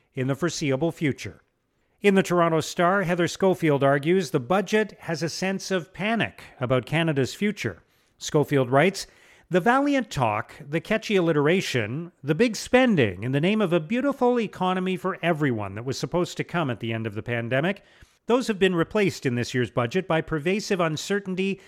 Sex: male